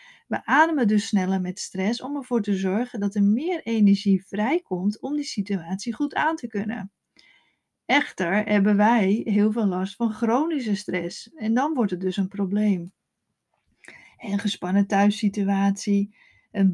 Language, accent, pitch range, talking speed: Dutch, Dutch, 200-250 Hz, 150 wpm